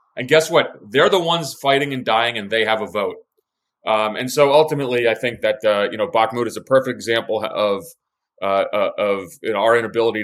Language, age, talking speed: English, 30-49, 215 wpm